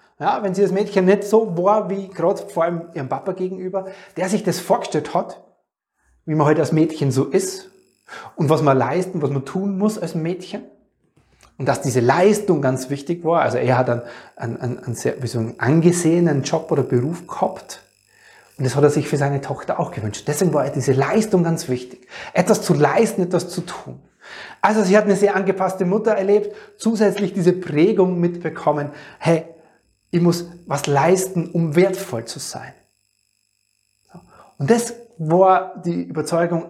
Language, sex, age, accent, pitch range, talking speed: German, male, 30-49, German, 145-190 Hz, 175 wpm